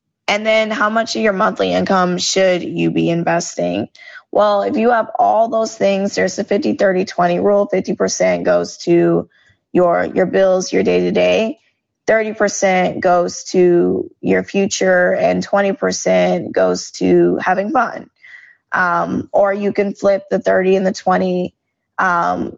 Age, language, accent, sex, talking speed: 10-29, English, American, female, 140 wpm